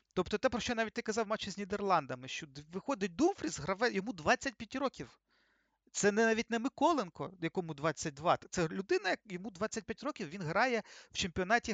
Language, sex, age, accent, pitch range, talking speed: Ukrainian, male, 40-59, native, 175-230 Hz, 170 wpm